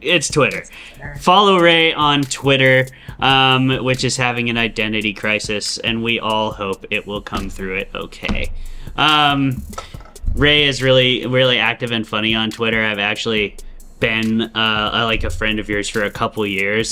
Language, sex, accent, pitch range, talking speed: English, male, American, 110-130 Hz, 165 wpm